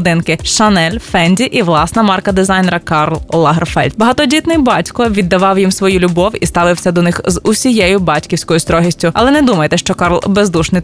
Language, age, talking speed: Ukrainian, 20-39, 155 wpm